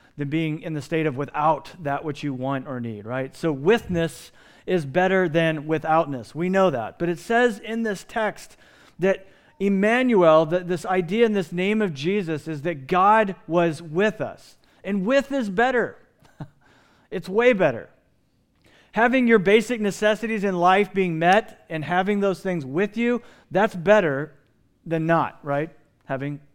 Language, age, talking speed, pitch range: English, 40-59, 165 wpm, 160-200 Hz